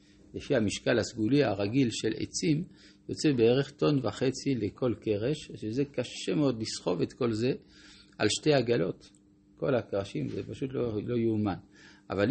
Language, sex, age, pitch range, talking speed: Hebrew, male, 50-69, 100-130 Hz, 145 wpm